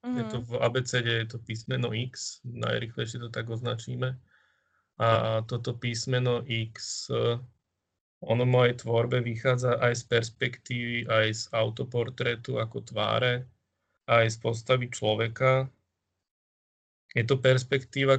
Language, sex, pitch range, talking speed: Czech, male, 110-125 Hz, 120 wpm